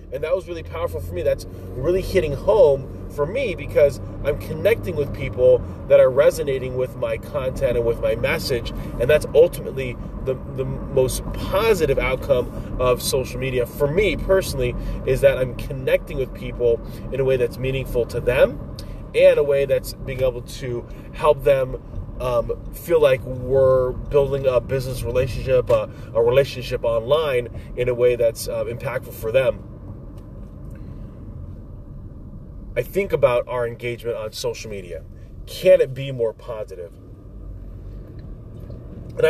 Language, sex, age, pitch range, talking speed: English, male, 30-49, 120-165 Hz, 150 wpm